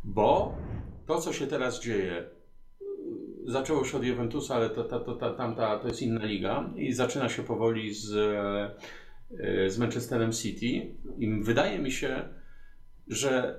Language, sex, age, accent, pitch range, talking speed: Polish, male, 40-59, native, 120-145 Hz, 130 wpm